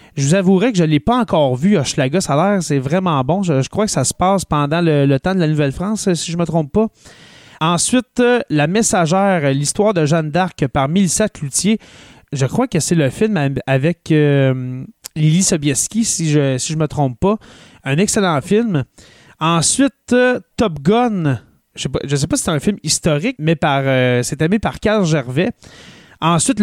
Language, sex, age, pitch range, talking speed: French, male, 30-49, 145-195 Hz, 205 wpm